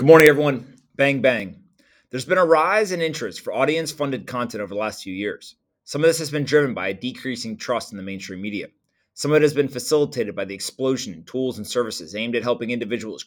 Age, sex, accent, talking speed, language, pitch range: 30-49, male, American, 225 wpm, English, 115-145 Hz